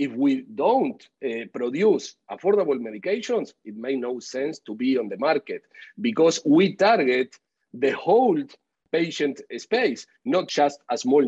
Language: English